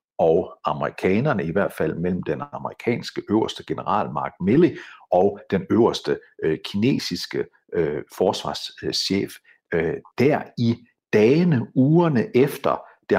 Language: Danish